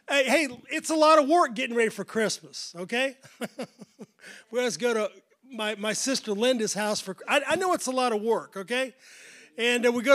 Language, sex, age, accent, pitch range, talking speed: English, male, 40-59, American, 240-295 Hz, 205 wpm